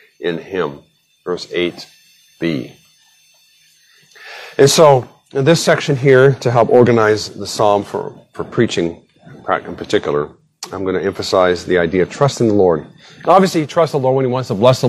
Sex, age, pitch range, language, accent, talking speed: male, 40-59, 105-145 Hz, English, American, 165 wpm